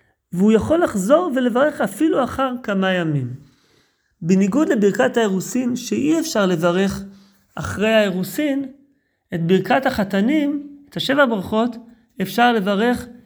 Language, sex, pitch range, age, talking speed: Hebrew, male, 180-235 Hz, 30-49, 110 wpm